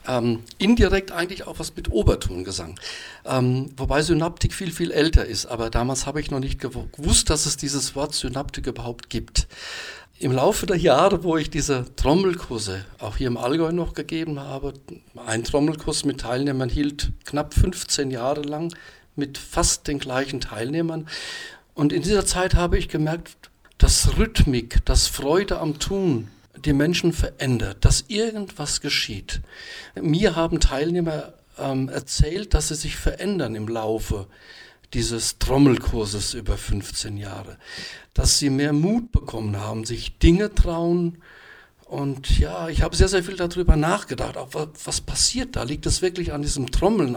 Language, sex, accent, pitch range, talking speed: German, male, German, 120-165 Hz, 155 wpm